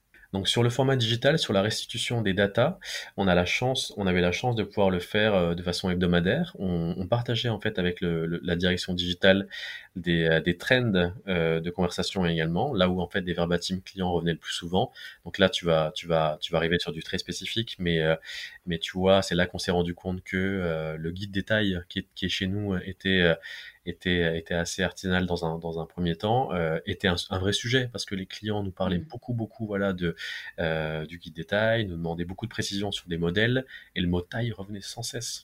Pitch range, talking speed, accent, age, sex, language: 85-100 Hz, 225 wpm, French, 20-39, male, French